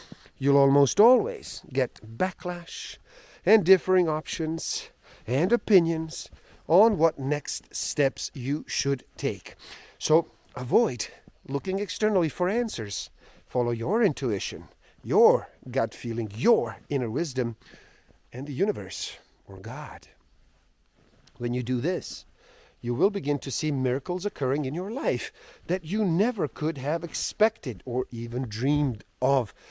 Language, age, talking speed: English, 50-69, 125 wpm